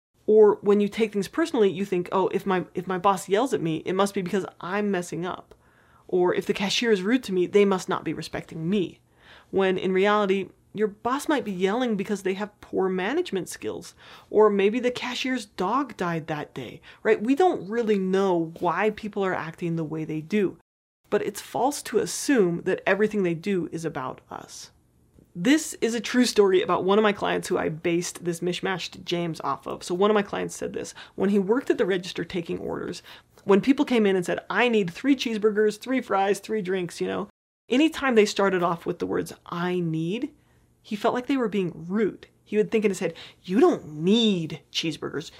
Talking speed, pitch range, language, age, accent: 210 wpm, 175-220 Hz, English, 30-49, American